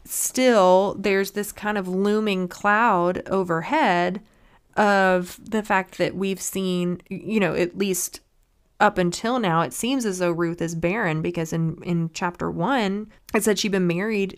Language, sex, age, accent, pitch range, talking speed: English, female, 20-39, American, 175-205 Hz, 160 wpm